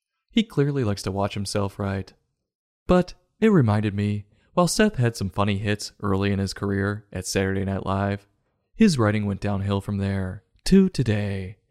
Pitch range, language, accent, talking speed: 100-125 Hz, English, American, 170 wpm